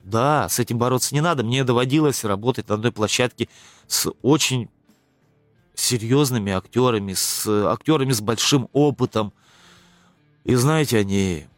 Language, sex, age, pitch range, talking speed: Russian, male, 20-39, 105-140 Hz, 125 wpm